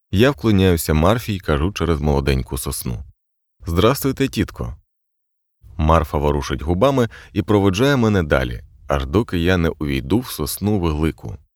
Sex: male